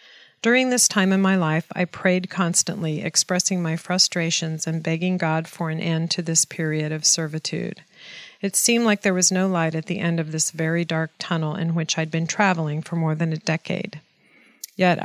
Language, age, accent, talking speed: English, 40-59, American, 195 wpm